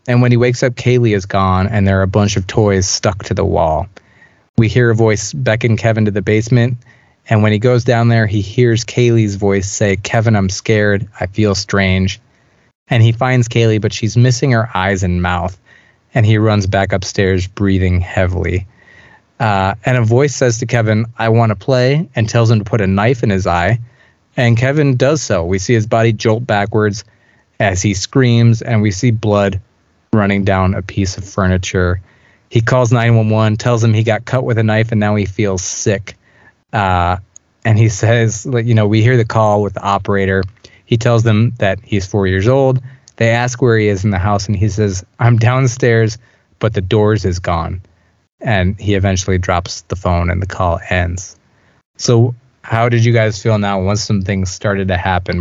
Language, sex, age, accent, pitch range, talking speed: English, male, 20-39, American, 95-115 Hz, 200 wpm